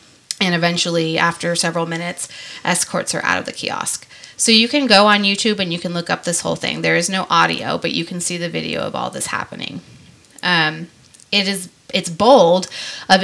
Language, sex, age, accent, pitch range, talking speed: English, female, 20-39, American, 170-225 Hz, 200 wpm